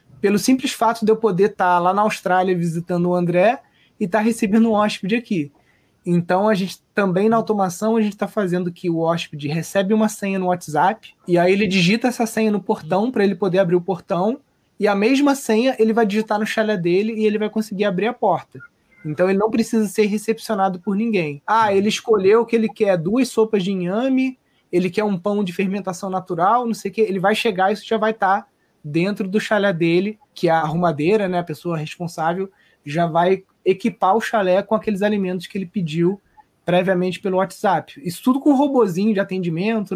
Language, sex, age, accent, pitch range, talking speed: Portuguese, male, 20-39, Brazilian, 180-220 Hz, 210 wpm